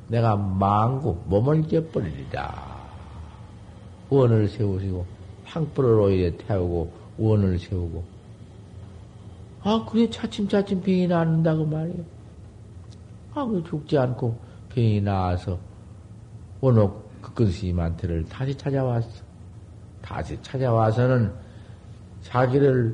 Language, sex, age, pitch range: Korean, male, 50-69, 105-140 Hz